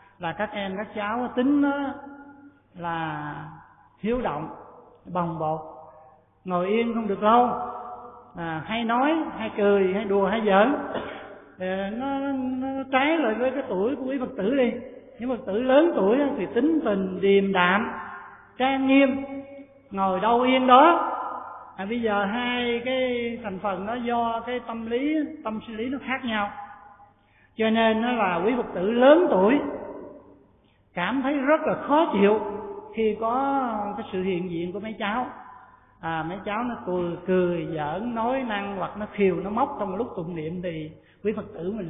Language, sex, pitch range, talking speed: Vietnamese, male, 195-255 Hz, 170 wpm